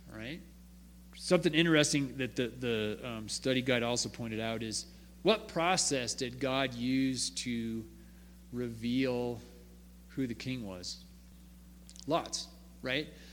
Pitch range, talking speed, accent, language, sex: 100-145 Hz, 115 wpm, American, English, male